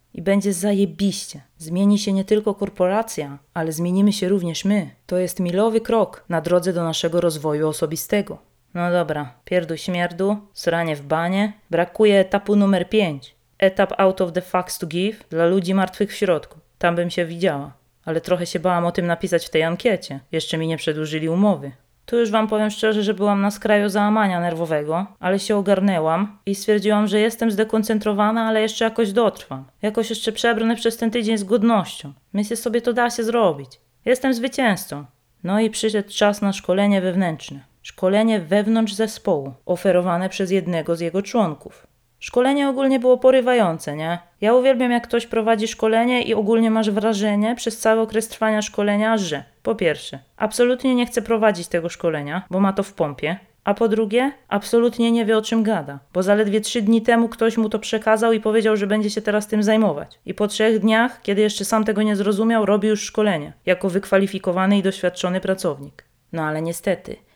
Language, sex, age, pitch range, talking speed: Polish, female, 20-39, 175-220 Hz, 180 wpm